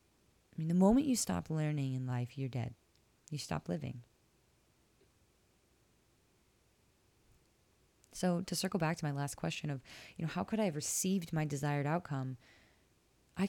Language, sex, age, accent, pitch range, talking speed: English, female, 20-39, American, 120-160 Hz, 150 wpm